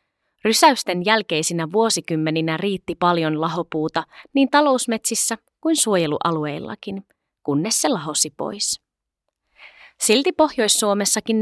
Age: 30-49